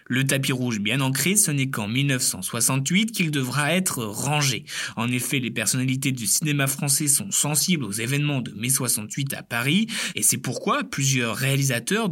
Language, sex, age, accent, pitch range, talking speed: French, male, 20-39, French, 125-160 Hz, 170 wpm